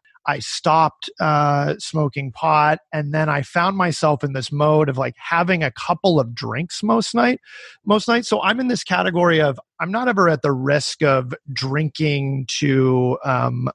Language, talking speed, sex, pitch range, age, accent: English, 175 wpm, male, 130-175 Hz, 30-49, American